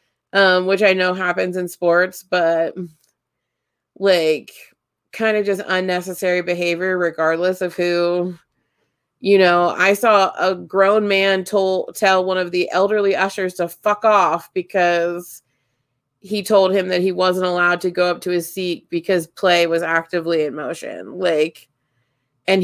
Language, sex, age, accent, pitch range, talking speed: English, female, 20-39, American, 170-195 Hz, 150 wpm